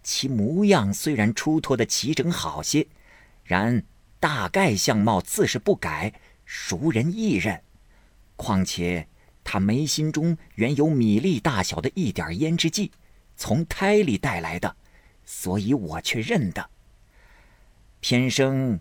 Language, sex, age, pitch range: Chinese, male, 50-69, 95-145 Hz